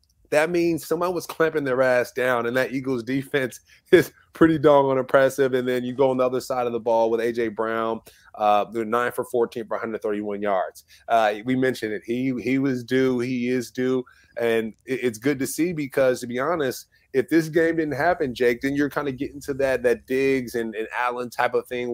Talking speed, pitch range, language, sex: 220 wpm, 115-135 Hz, English, male